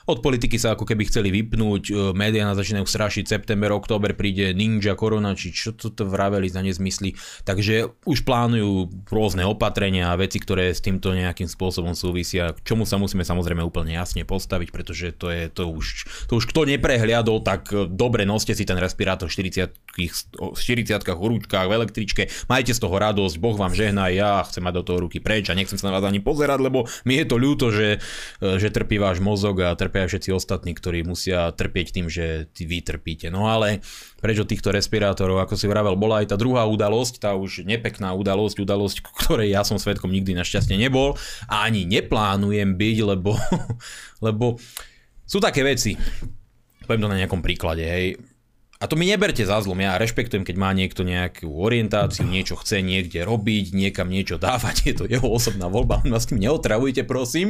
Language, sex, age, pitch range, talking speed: Slovak, male, 20-39, 95-110 Hz, 185 wpm